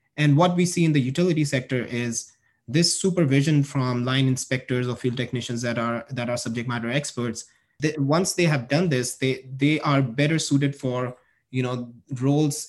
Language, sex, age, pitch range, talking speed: English, male, 20-39, 115-135 Hz, 185 wpm